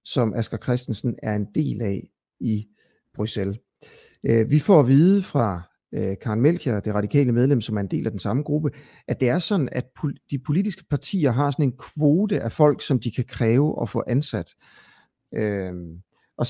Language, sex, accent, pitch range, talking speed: Danish, male, native, 110-155 Hz, 180 wpm